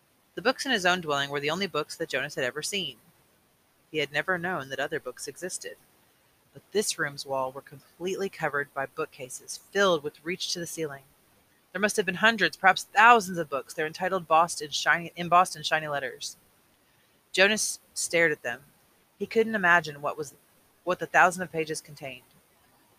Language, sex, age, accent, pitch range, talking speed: English, female, 30-49, American, 145-185 Hz, 185 wpm